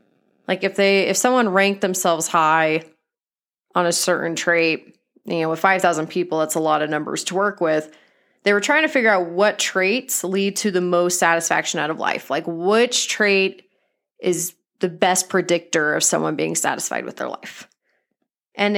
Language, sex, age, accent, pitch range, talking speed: English, female, 30-49, American, 170-230 Hz, 180 wpm